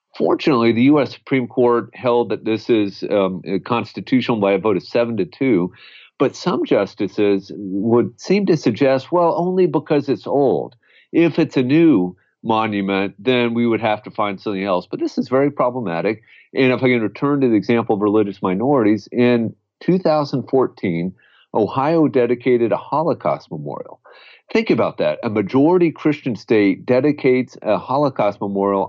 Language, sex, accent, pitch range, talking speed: English, male, American, 105-140 Hz, 160 wpm